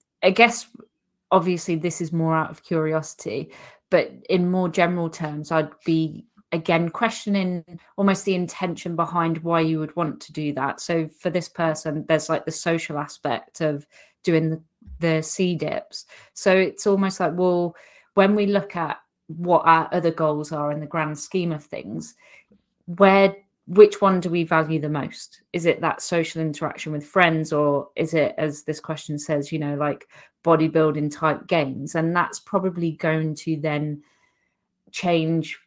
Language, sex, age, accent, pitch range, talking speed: English, female, 30-49, British, 155-180 Hz, 165 wpm